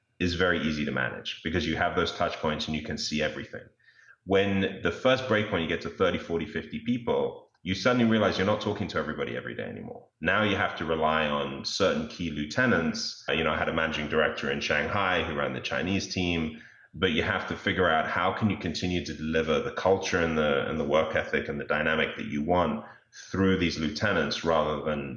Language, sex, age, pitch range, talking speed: English, male, 30-49, 80-100 Hz, 220 wpm